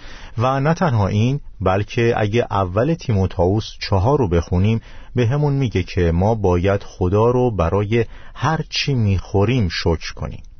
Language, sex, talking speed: Persian, male, 135 wpm